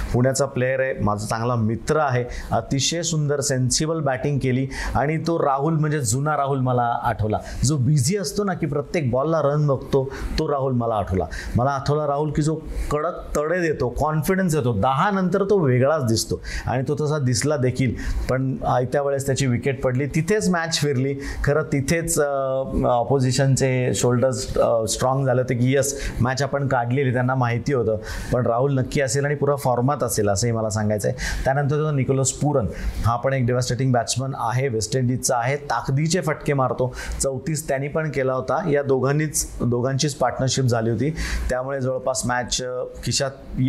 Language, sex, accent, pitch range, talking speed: Marathi, male, native, 125-150 Hz, 80 wpm